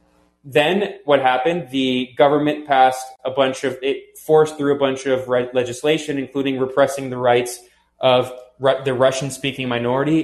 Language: English